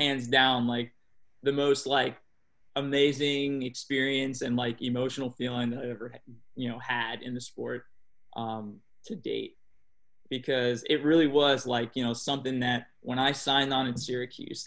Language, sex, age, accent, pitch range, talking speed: English, male, 20-39, American, 120-140 Hz, 160 wpm